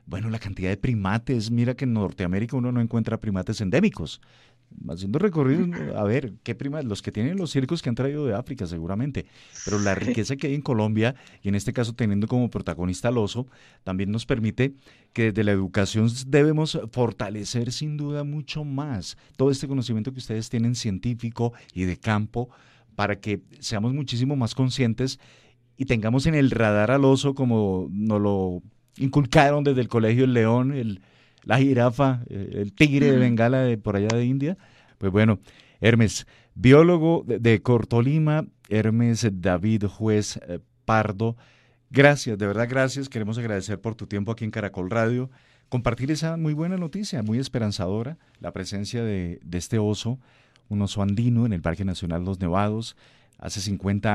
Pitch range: 105-130 Hz